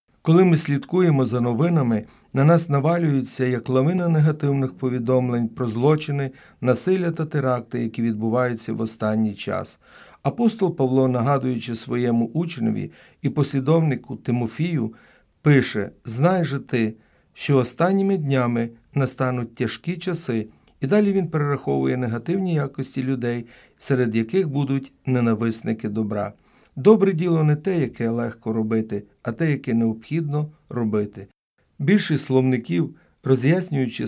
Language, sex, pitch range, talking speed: Ukrainian, male, 115-155 Hz, 120 wpm